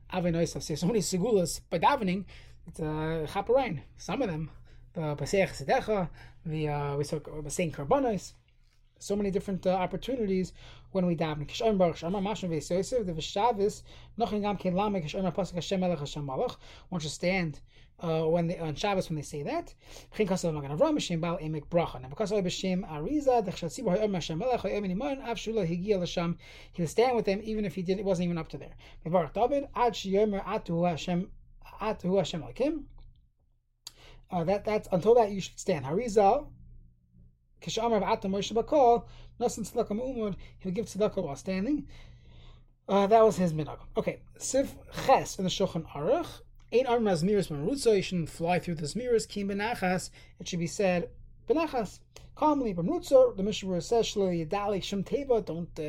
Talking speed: 95 wpm